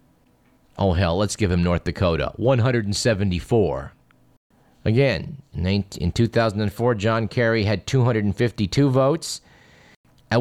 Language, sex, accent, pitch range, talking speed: English, male, American, 100-125 Hz, 100 wpm